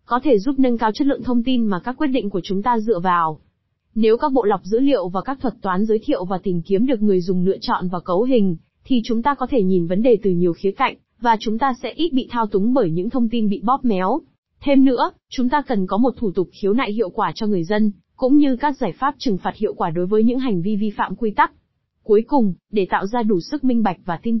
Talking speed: 280 wpm